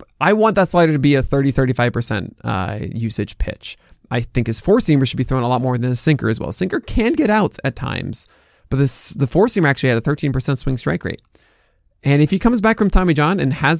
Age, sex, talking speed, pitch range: 20-39, male, 235 wpm, 115-150 Hz